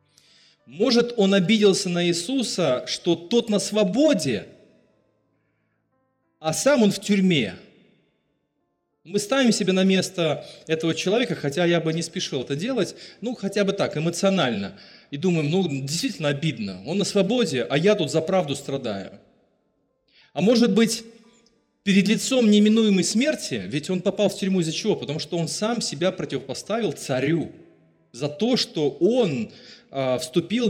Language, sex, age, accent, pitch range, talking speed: Russian, male, 30-49, native, 150-210 Hz, 145 wpm